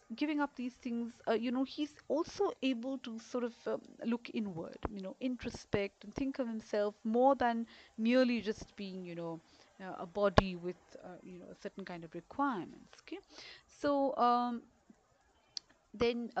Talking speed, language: 170 wpm, English